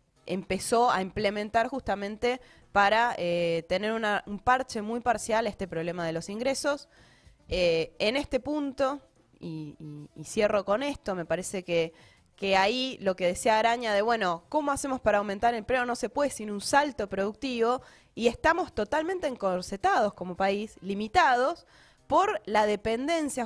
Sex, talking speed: female, 155 wpm